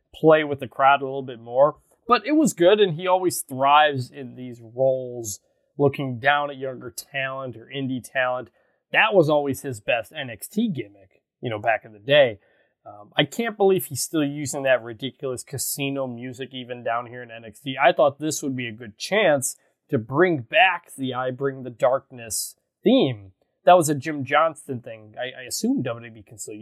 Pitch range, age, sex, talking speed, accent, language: 125-165 Hz, 20-39, male, 190 wpm, American, English